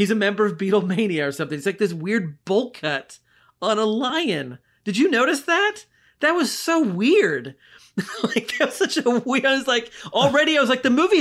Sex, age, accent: male, 30-49, American